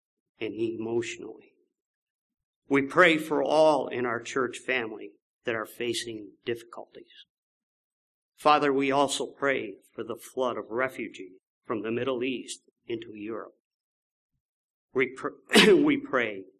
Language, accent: English, American